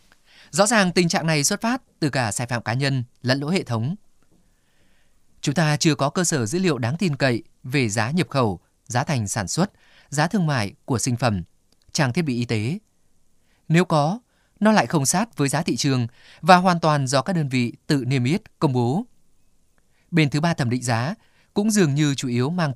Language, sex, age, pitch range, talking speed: Vietnamese, male, 20-39, 120-170 Hz, 215 wpm